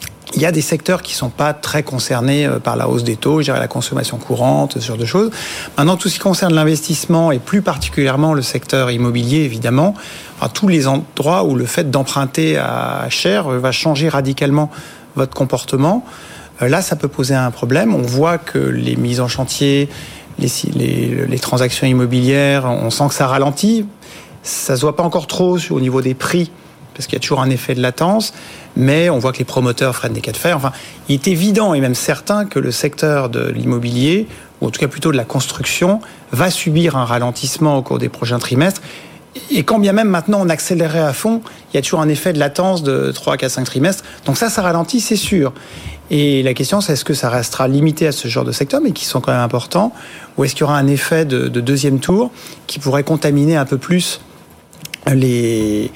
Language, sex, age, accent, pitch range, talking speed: French, male, 40-59, French, 130-170 Hz, 215 wpm